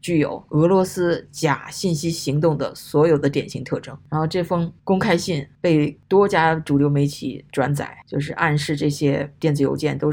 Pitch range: 140-155 Hz